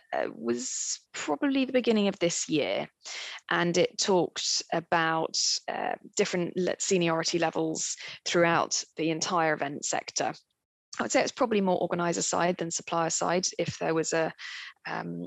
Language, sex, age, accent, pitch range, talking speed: English, female, 20-39, British, 160-180 Hz, 145 wpm